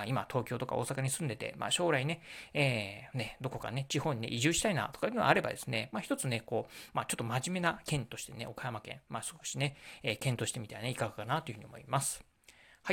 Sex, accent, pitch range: male, native, 120-160 Hz